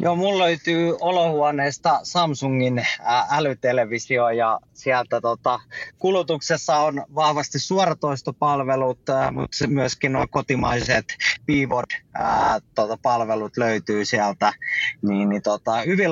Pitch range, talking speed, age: 125-150 Hz, 95 wpm, 20-39